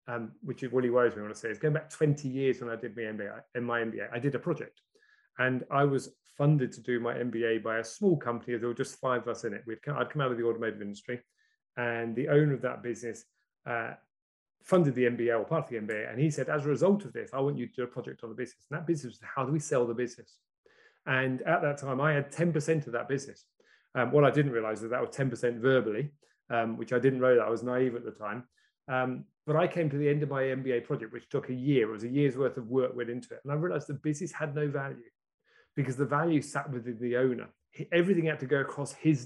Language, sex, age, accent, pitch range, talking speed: English, male, 30-49, British, 120-150 Hz, 275 wpm